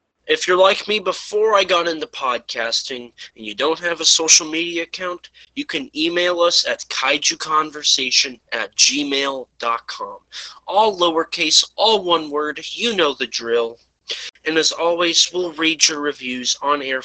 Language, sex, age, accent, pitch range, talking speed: English, male, 20-39, American, 135-185 Hz, 150 wpm